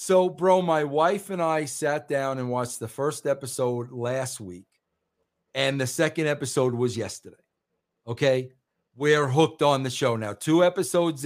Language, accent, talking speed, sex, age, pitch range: English, American, 160 wpm, male, 50-69, 135-190 Hz